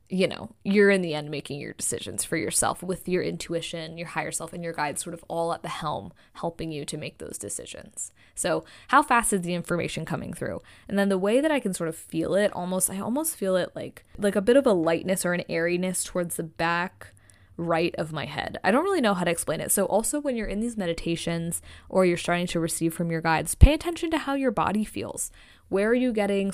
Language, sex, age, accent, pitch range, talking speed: English, female, 20-39, American, 170-205 Hz, 240 wpm